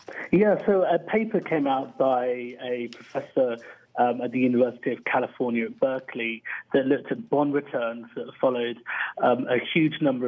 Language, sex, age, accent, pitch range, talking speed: English, male, 30-49, British, 120-150 Hz, 165 wpm